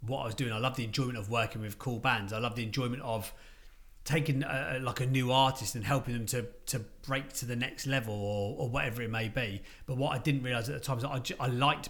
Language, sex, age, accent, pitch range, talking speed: English, male, 30-49, British, 115-135 Hz, 270 wpm